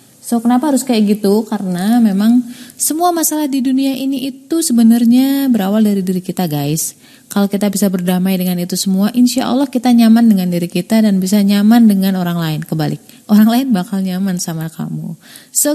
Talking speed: 175 wpm